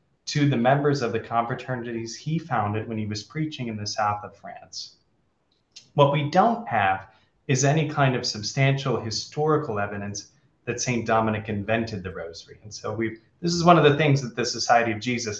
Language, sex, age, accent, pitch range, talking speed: English, male, 20-39, American, 105-135 Hz, 185 wpm